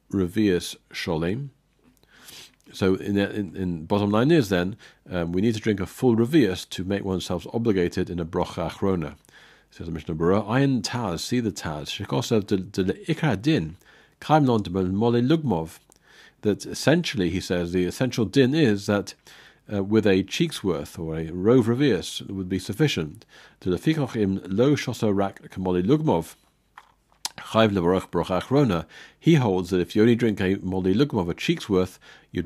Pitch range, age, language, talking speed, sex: 90-120 Hz, 50-69, English, 155 wpm, male